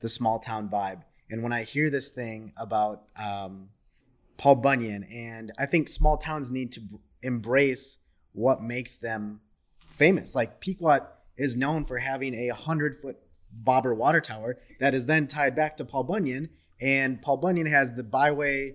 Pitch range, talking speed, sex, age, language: 105-130 Hz, 165 wpm, male, 20-39, English